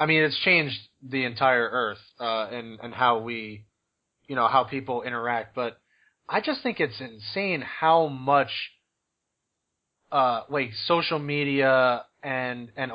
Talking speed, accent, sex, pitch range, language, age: 145 wpm, American, male, 125-155 Hz, English, 30-49